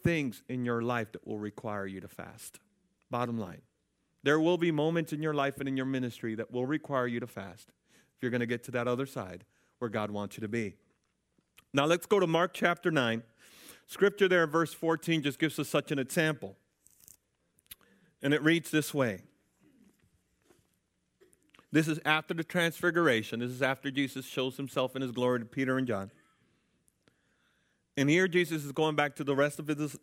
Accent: American